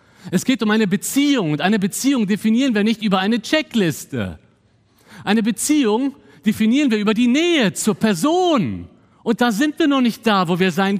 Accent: German